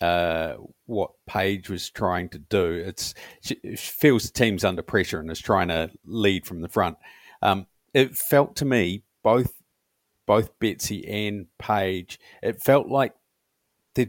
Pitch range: 95-120 Hz